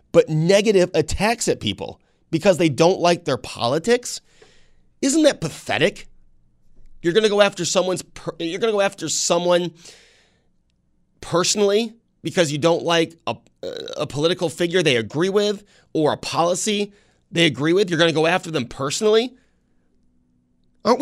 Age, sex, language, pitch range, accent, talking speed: 30-49, male, English, 125-180 Hz, American, 145 wpm